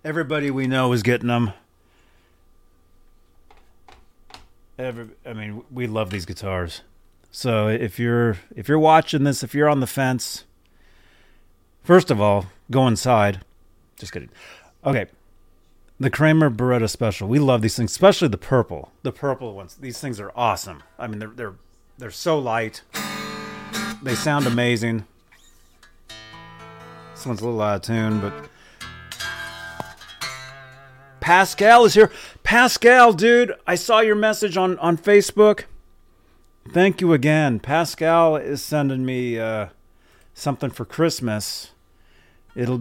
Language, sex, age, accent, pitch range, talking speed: English, male, 30-49, American, 95-140 Hz, 130 wpm